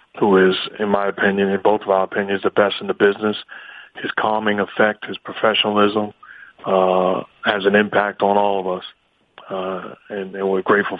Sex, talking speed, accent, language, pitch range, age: male, 180 wpm, American, English, 95-105 Hz, 30-49